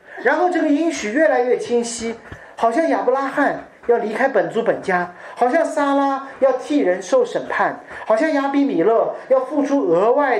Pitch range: 185-280 Hz